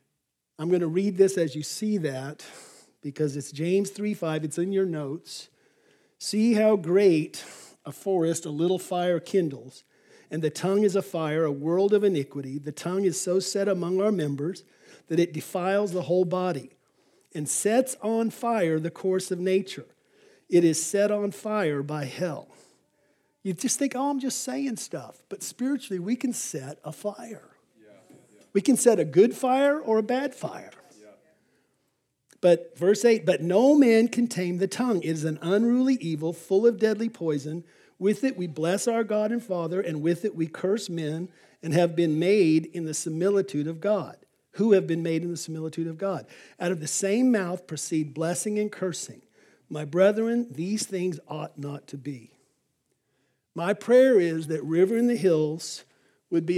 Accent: American